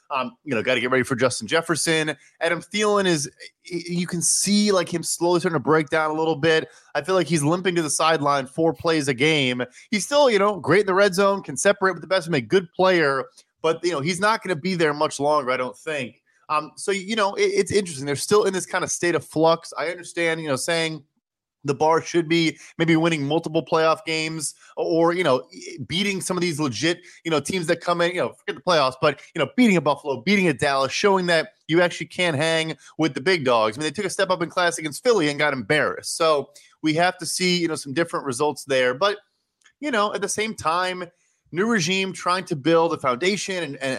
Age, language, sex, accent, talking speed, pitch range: 20-39, English, male, American, 245 wpm, 150-185 Hz